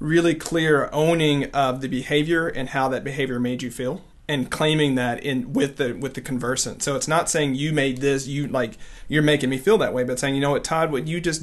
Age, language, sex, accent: 40-59, English, male, American